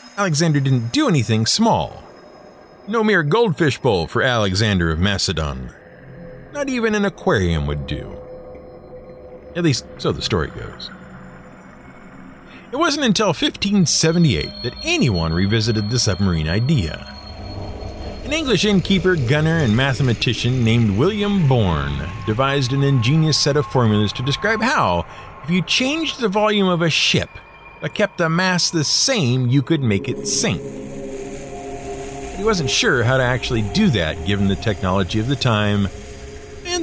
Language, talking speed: English, 140 wpm